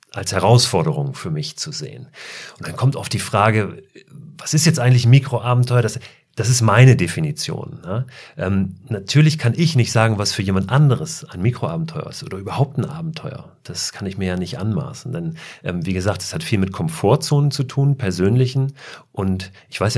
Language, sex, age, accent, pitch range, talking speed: German, male, 40-59, German, 100-150 Hz, 190 wpm